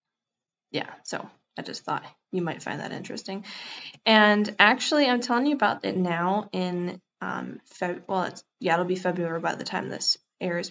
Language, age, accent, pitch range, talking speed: English, 10-29, American, 175-215 Hz, 180 wpm